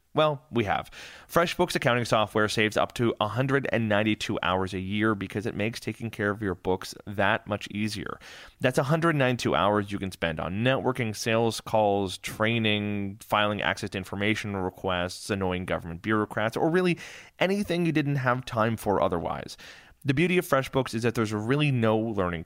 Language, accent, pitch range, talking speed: English, American, 100-130 Hz, 165 wpm